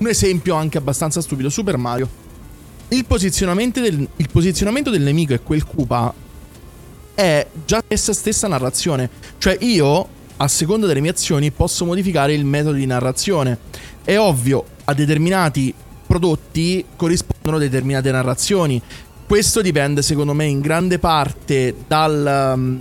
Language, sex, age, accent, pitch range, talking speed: Italian, male, 20-39, native, 135-175 Hz, 135 wpm